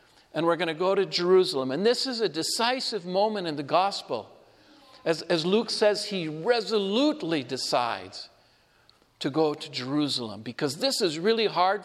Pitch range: 165-215 Hz